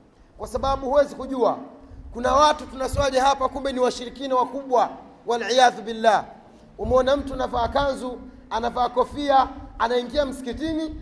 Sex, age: male, 40-59